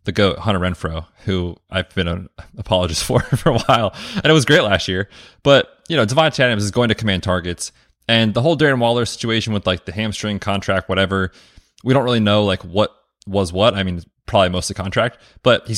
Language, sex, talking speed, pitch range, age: English, male, 220 wpm, 95-115 Hz, 20-39